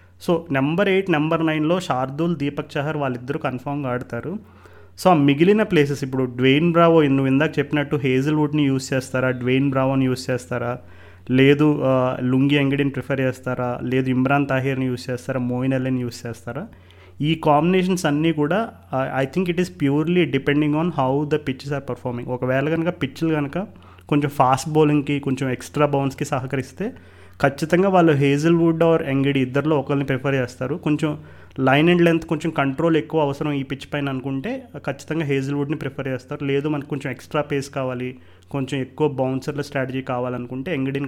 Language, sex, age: Telugu, male, 30-49